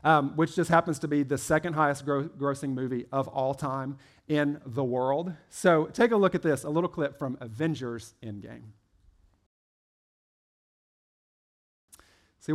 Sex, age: male, 40-59